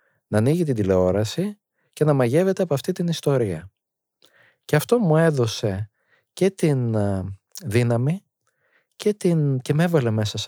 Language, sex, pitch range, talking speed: Greek, male, 110-160 Hz, 145 wpm